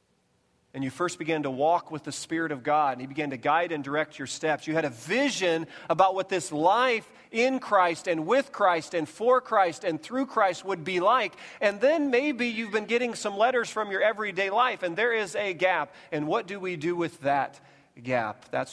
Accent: American